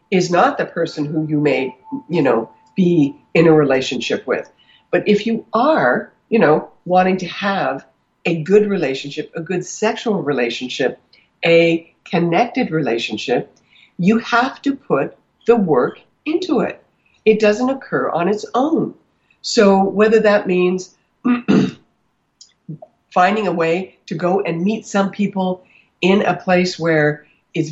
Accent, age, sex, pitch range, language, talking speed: American, 60-79, female, 150-195 Hz, English, 140 wpm